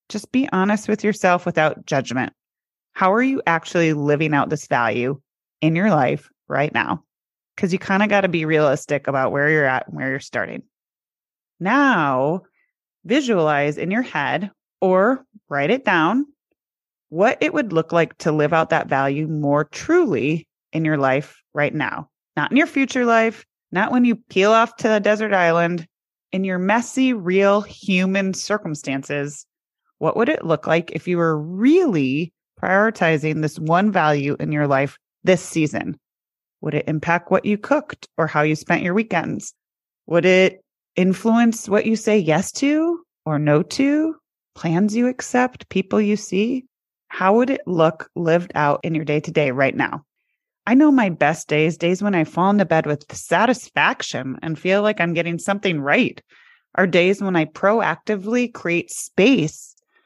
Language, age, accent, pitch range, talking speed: English, 30-49, American, 155-215 Hz, 170 wpm